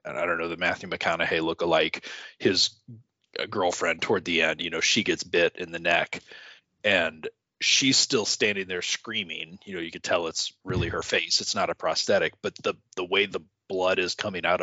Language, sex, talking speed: English, male, 200 wpm